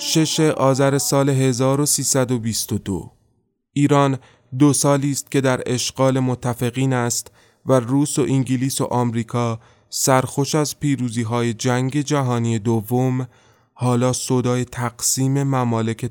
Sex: male